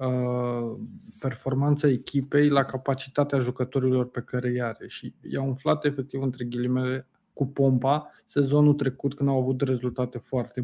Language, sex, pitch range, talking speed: Romanian, male, 140-190 Hz, 135 wpm